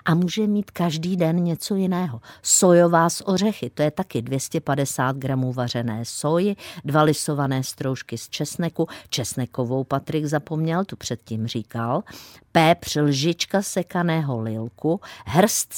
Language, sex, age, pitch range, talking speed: Czech, female, 50-69, 130-170 Hz, 125 wpm